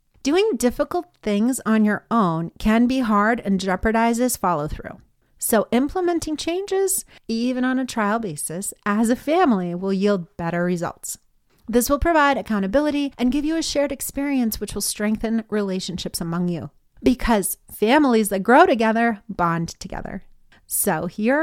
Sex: female